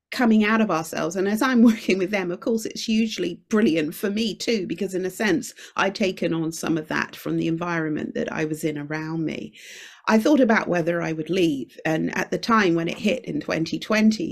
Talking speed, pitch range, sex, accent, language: 220 wpm, 165-215 Hz, female, British, English